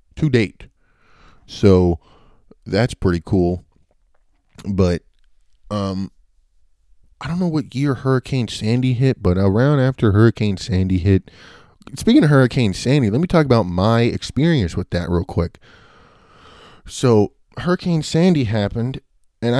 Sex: male